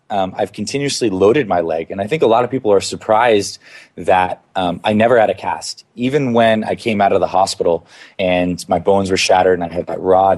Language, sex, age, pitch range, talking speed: English, male, 20-39, 90-105 Hz, 230 wpm